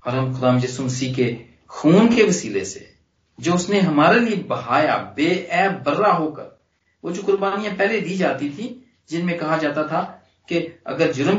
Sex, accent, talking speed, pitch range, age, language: male, native, 165 wpm, 125-190 Hz, 40-59, Hindi